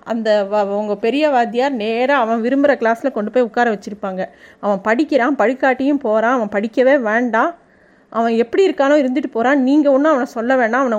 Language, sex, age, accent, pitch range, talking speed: Tamil, female, 30-49, native, 225-285 Hz, 160 wpm